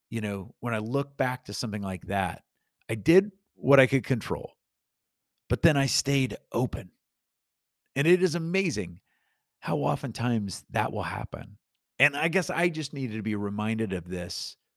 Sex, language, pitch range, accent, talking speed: male, English, 100-135 Hz, American, 165 wpm